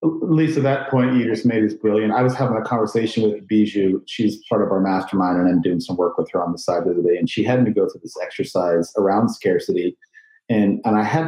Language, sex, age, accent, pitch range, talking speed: English, male, 40-59, American, 105-130 Hz, 250 wpm